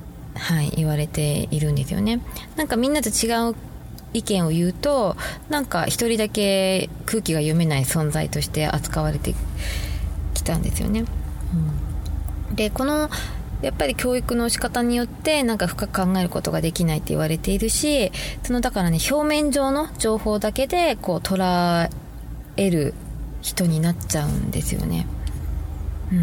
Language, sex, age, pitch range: Japanese, female, 20-39, 145-215 Hz